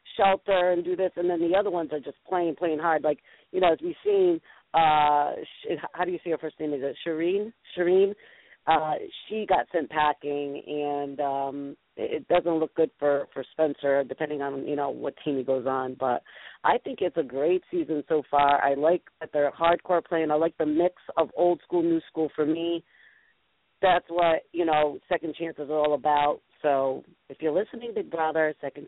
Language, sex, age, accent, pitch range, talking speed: English, female, 40-59, American, 150-185 Hz, 205 wpm